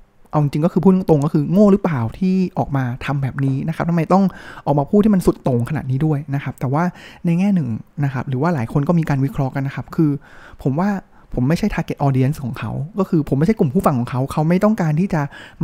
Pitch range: 135-170 Hz